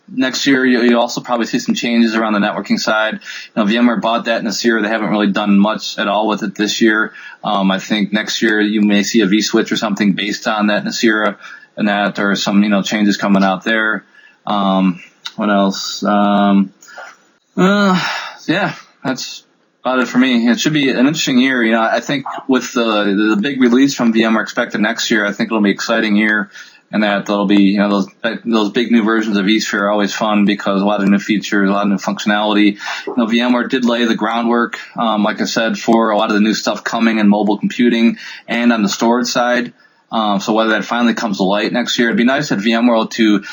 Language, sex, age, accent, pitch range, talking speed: English, male, 20-39, American, 100-120 Hz, 225 wpm